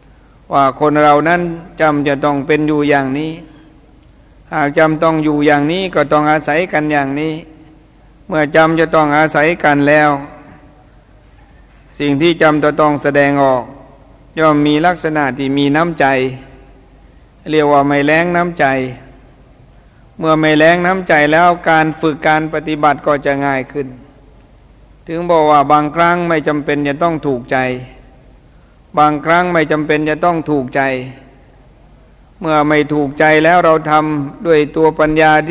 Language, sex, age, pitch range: Thai, male, 60-79, 140-155 Hz